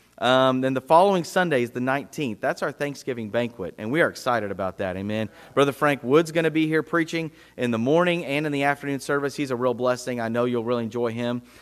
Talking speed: 230 wpm